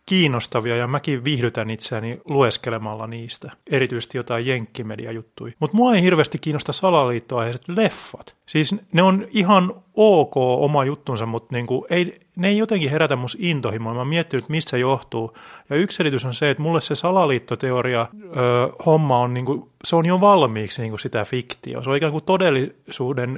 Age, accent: 30-49, native